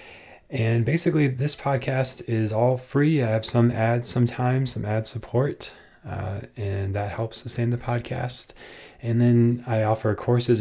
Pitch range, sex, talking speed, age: 105-125 Hz, male, 155 wpm, 20-39